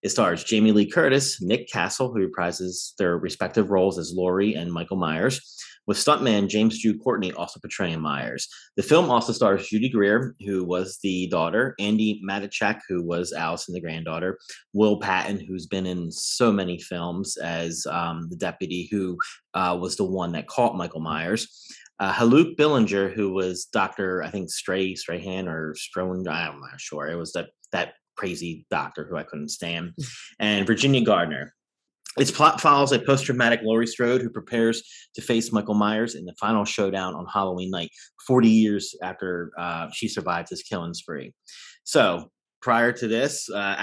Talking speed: 175 wpm